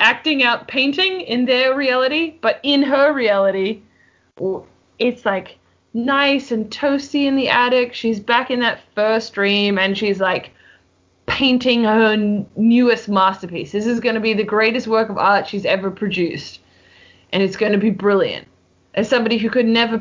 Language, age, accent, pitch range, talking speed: English, 20-39, Australian, 200-270 Hz, 165 wpm